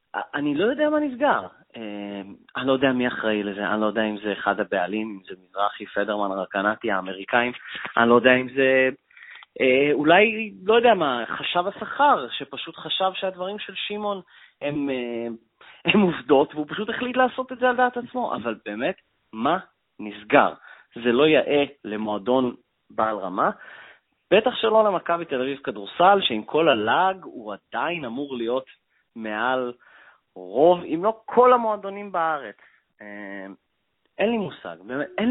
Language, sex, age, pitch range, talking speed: Hebrew, male, 30-49, 115-190 Hz, 150 wpm